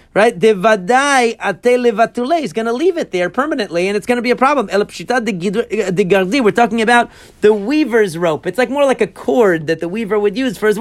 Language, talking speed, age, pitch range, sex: English, 205 wpm, 40-59, 195-240 Hz, male